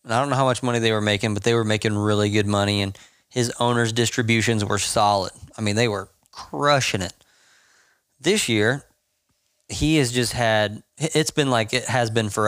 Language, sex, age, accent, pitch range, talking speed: English, male, 20-39, American, 110-135 Hz, 195 wpm